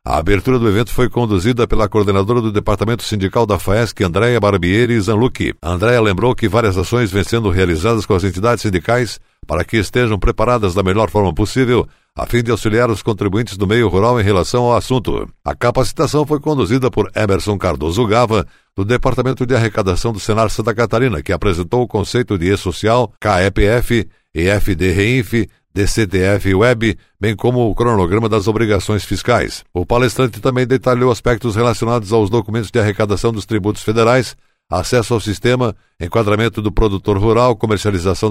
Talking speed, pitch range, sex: 165 wpm, 100-120 Hz, male